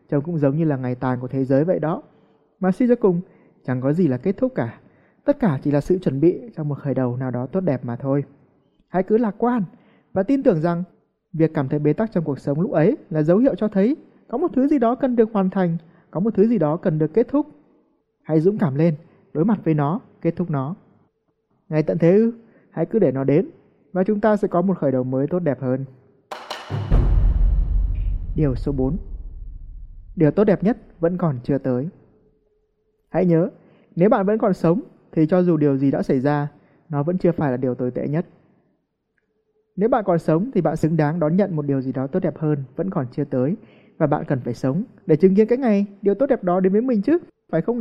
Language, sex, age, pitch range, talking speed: Vietnamese, male, 20-39, 140-200 Hz, 235 wpm